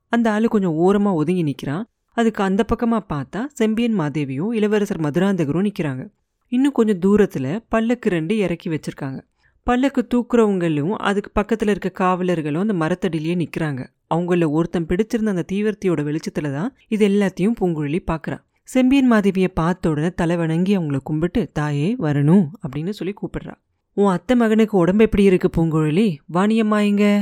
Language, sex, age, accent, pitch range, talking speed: Tamil, female, 30-49, native, 165-215 Hz, 140 wpm